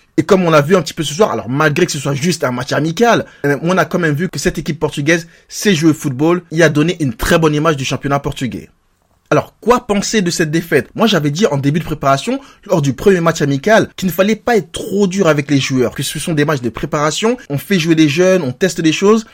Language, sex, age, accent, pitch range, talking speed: French, male, 20-39, French, 145-195 Hz, 265 wpm